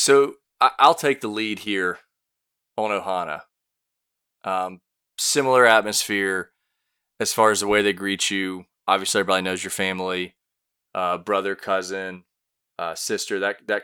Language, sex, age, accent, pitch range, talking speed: English, male, 20-39, American, 95-105 Hz, 135 wpm